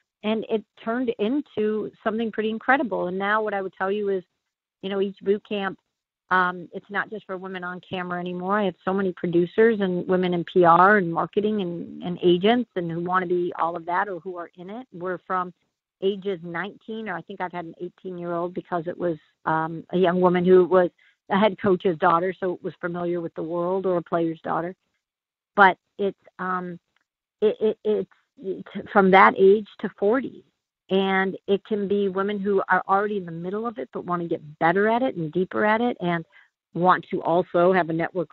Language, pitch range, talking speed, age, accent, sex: English, 175-200 Hz, 210 wpm, 50-69, American, female